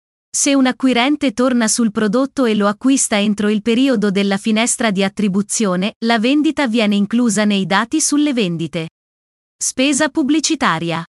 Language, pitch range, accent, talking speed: Italian, 205-255 Hz, native, 140 wpm